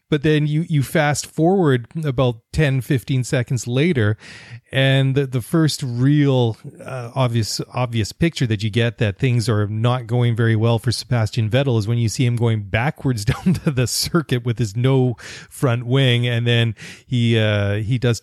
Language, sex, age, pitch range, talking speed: English, male, 30-49, 110-130 Hz, 180 wpm